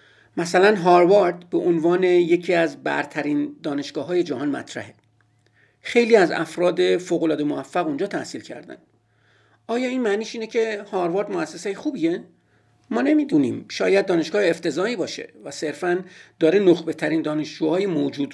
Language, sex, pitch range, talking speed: Persian, male, 155-210 Hz, 130 wpm